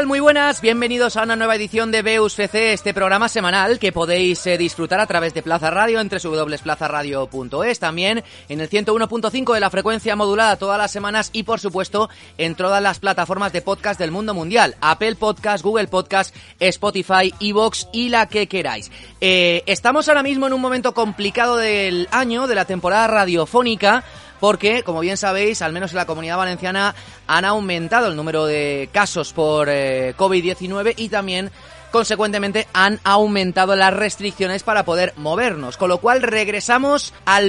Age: 30-49